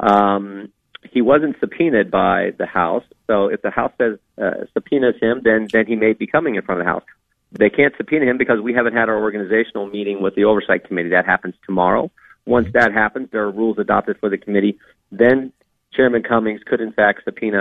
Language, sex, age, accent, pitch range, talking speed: English, male, 40-59, American, 110-130 Hz, 210 wpm